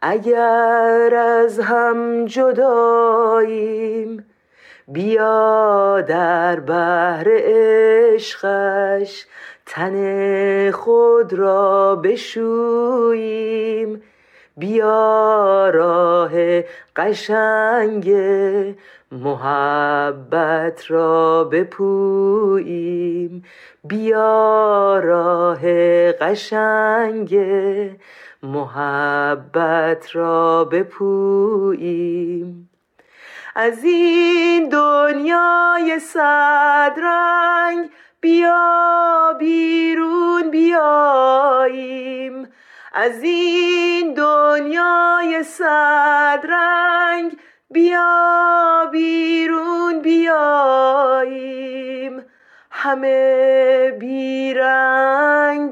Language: Persian